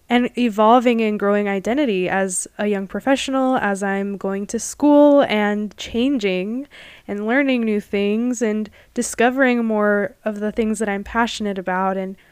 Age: 10-29